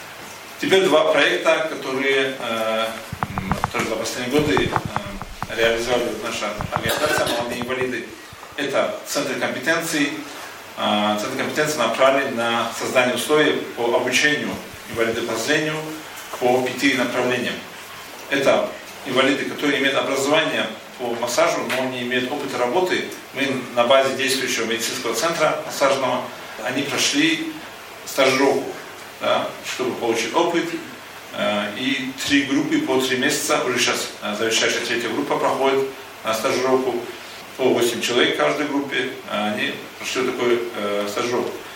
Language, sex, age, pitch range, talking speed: Russian, male, 40-59, 120-150 Hz, 115 wpm